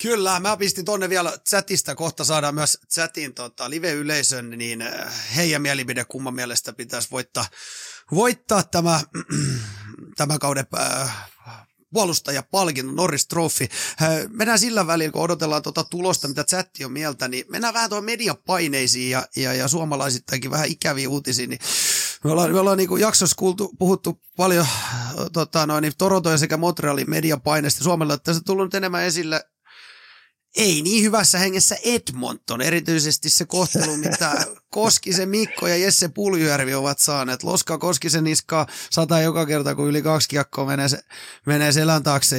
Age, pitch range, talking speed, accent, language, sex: 30-49, 140-180 Hz, 145 wpm, native, Finnish, male